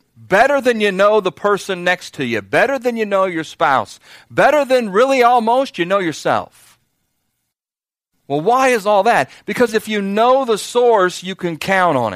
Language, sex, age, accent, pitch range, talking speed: English, male, 40-59, American, 160-205 Hz, 185 wpm